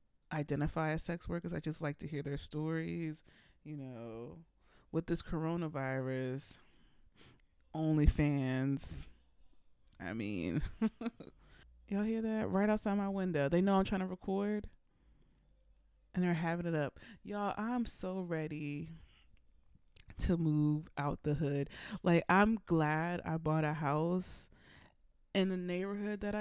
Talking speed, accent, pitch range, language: 130 wpm, American, 140-180 Hz, English